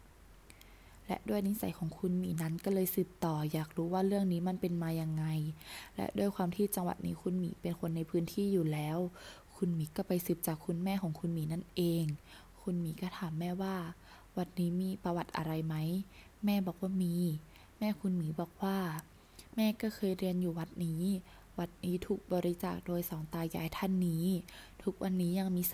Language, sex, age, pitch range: Thai, female, 20-39, 165-190 Hz